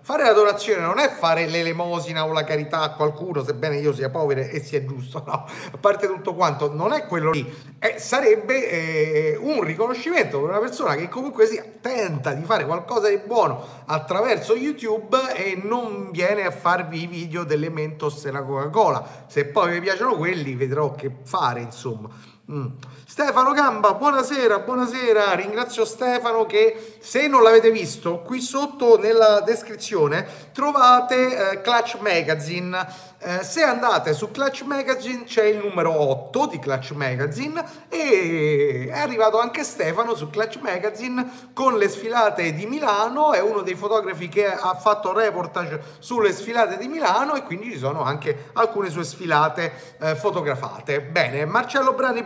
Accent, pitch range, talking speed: native, 155-235 Hz, 160 wpm